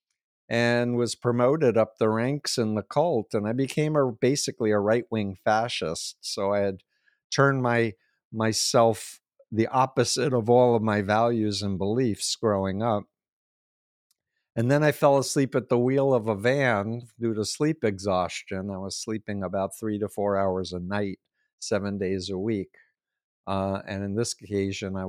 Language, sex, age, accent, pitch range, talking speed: English, male, 50-69, American, 100-120 Hz, 165 wpm